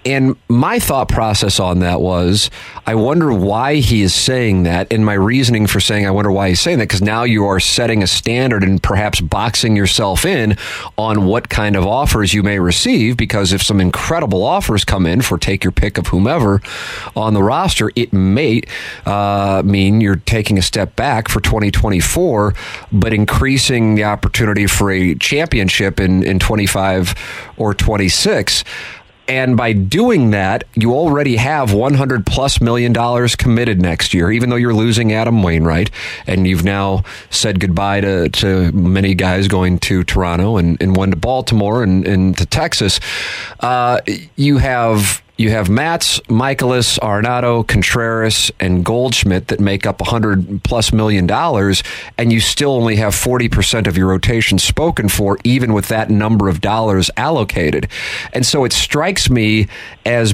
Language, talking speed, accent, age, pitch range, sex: English, 165 wpm, American, 30-49, 95-115 Hz, male